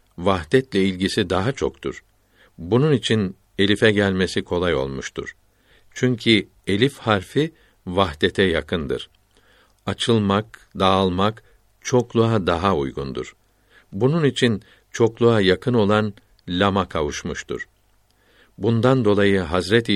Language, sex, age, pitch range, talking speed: Turkish, male, 60-79, 95-110 Hz, 90 wpm